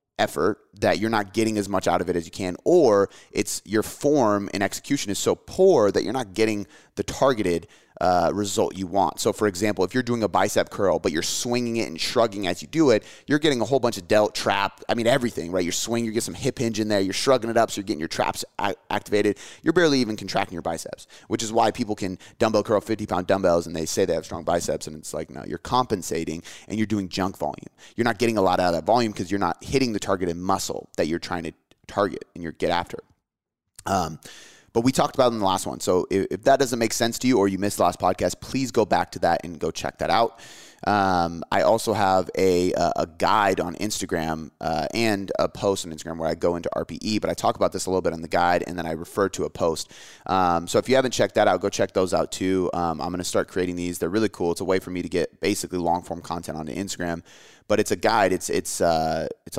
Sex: male